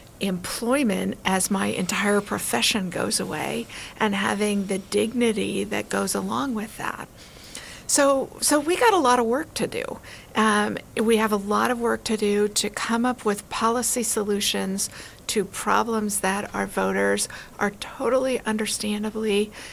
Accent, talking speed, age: American, 150 wpm, 50-69